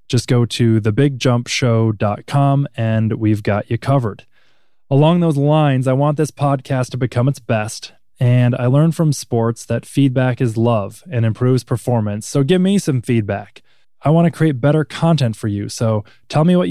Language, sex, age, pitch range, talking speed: English, male, 20-39, 110-135 Hz, 175 wpm